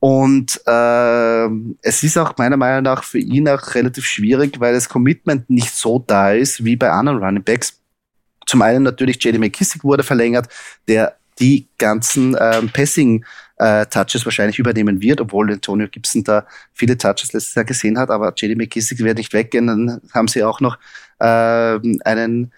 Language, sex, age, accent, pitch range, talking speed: German, male, 30-49, German, 110-130 Hz, 165 wpm